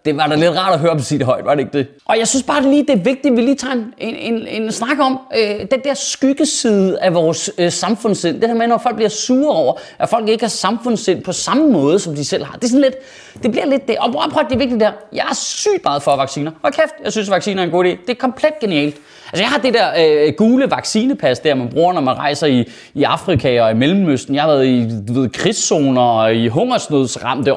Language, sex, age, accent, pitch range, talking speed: Danish, male, 30-49, native, 145-230 Hz, 280 wpm